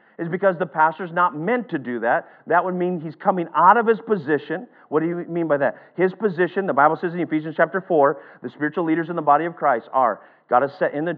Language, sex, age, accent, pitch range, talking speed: English, male, 40-59, American, 150-195 Hz, 250 wpm